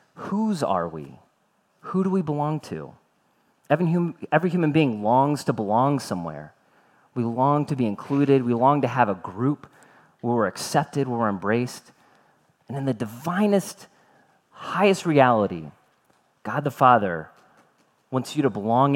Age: 30-49